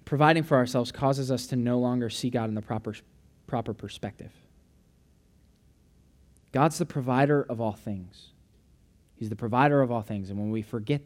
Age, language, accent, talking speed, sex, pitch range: 20-39, English, American, 170 wpm, male, 95-120 Hz